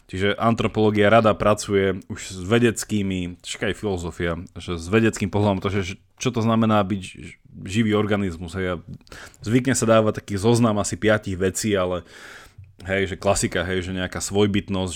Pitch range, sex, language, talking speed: 95-120 Hz, male, Slovak, 155 wpm